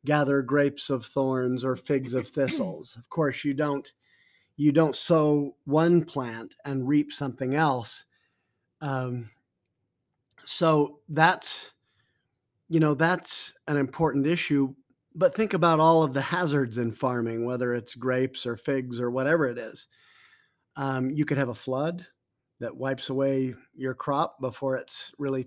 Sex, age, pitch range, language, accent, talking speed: male, 40-59, 130-155 Hz, English, American, 145 wpm